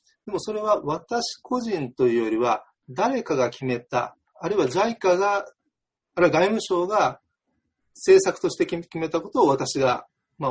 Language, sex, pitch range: Japanese, male, 130-195 Hz